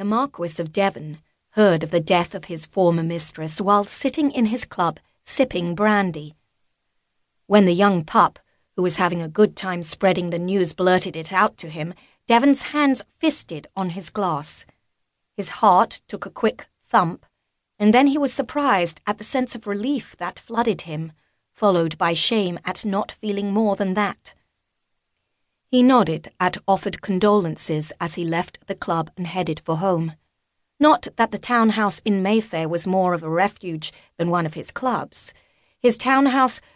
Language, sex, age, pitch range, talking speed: English, female, 30-49, 170-220 Hz, 170 wpm